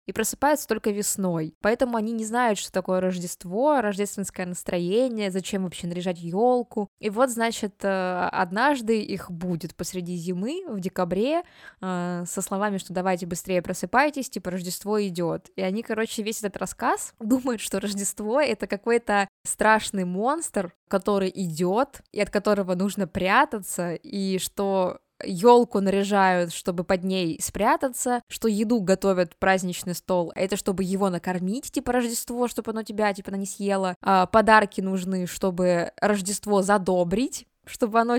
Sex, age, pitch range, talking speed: female, 20-39, 190-235 Hz, 140 wpm